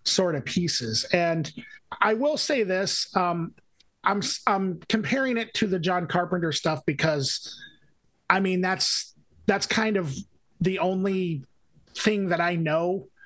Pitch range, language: 150-185 Hz, English